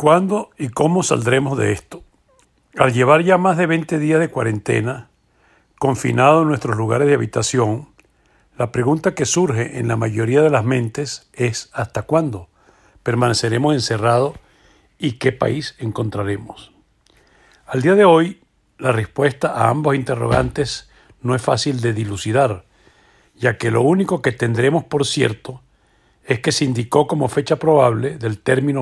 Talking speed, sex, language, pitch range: 150 wpm, male, Spanish, 120-150 Hz